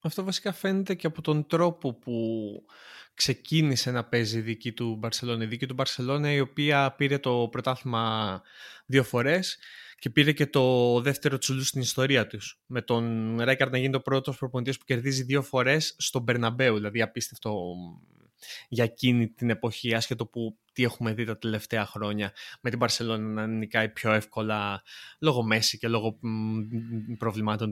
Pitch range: 115-140 Hz